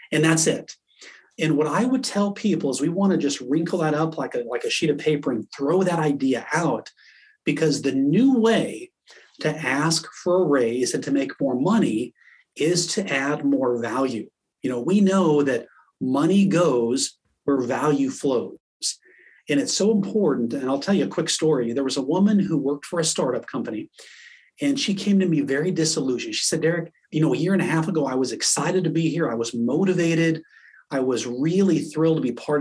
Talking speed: 205 wpm